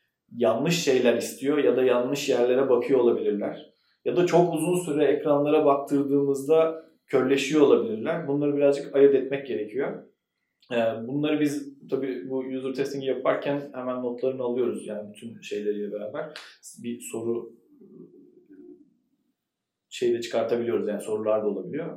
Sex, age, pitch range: male, 40-59, 120-150 Hz